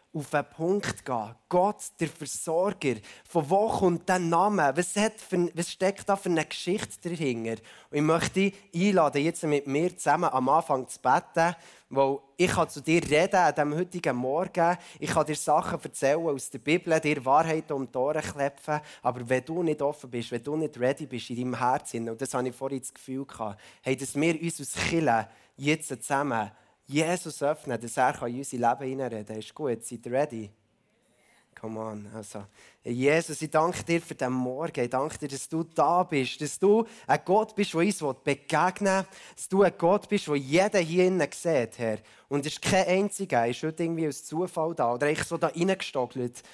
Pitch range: 125-170 Hz